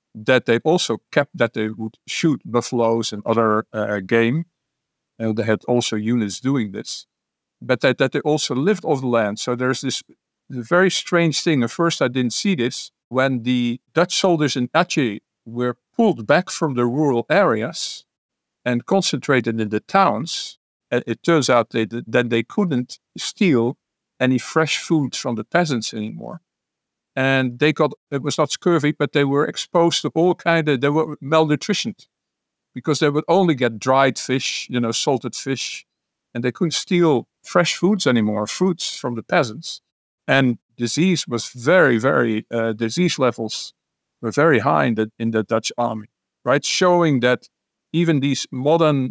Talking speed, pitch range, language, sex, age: 165 wpm, 120-155 Hz, English, male, 50-69